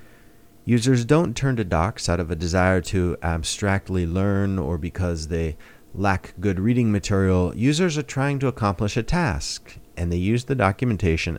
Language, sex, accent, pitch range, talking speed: English, male, American, 85-125 Hz, 165 wpm